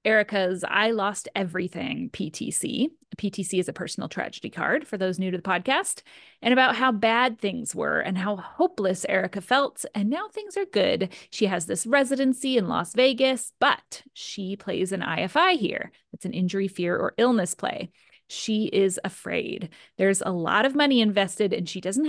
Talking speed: 175 wpm